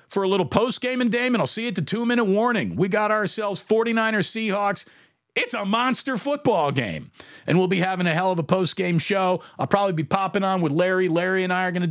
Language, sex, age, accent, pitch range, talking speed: English, male, 50-69, American, 115-185 Hz, 225 wpm